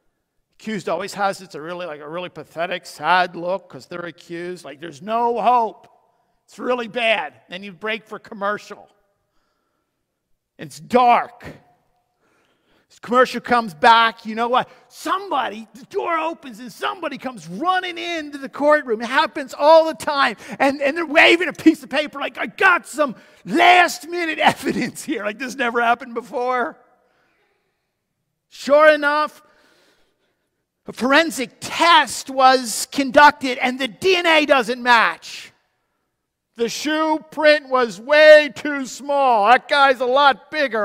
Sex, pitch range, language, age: male, 225-295 Hz, English, 50-69